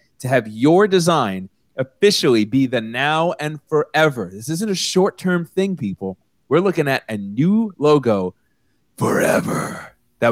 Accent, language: American, English